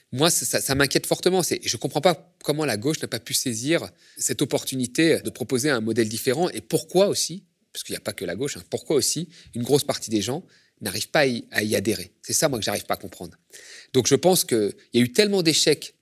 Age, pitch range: 30-49, 115-140 Hz